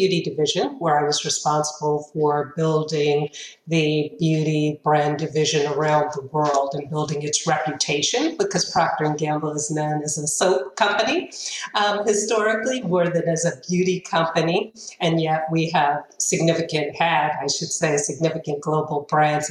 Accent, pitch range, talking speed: American, 150-170 Hz, 150 wpm